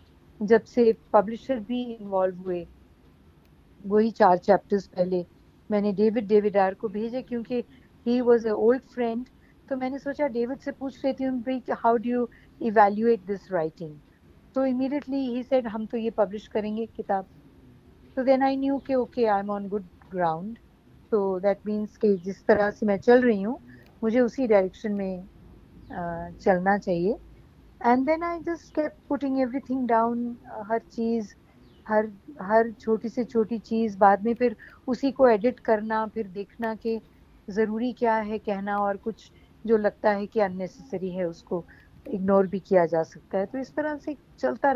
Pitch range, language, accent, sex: 200-255 Hz, Hindi, native, female